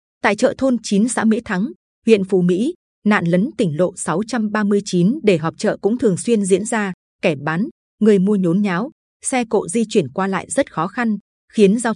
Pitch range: 185-230 Hz